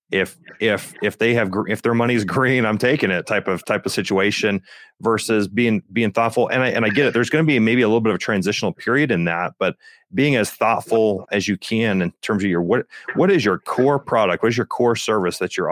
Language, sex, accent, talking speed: English, male, American, 250 wpm